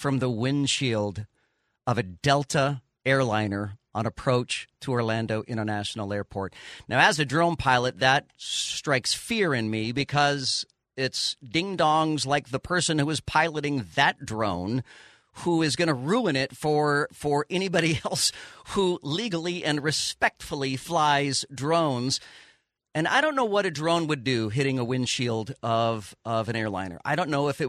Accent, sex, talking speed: American, male, 155 wpm